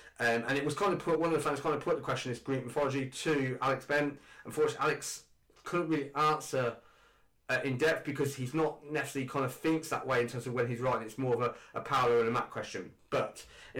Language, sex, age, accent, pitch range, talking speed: English, male, 20-39, British, 120-150 Hz, 250 wpm